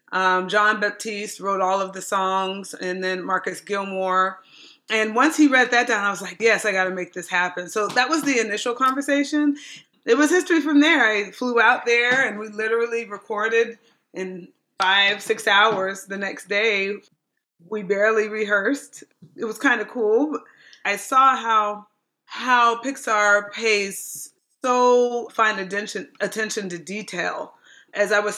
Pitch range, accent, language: 190-235 Hz, American, English